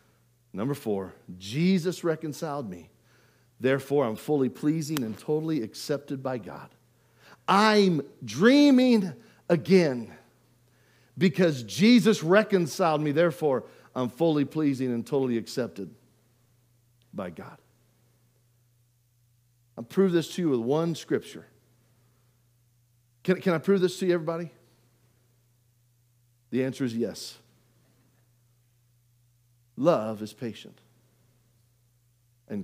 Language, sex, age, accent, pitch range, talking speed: English, male, 50-69, American, 120-165 Hz, 100 wpm